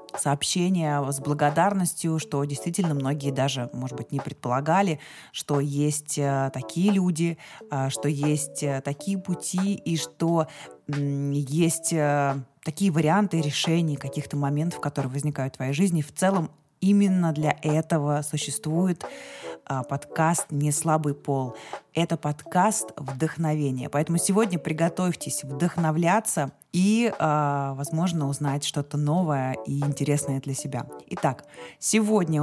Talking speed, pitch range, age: 110 wpm, 145-175 Hz, 20-39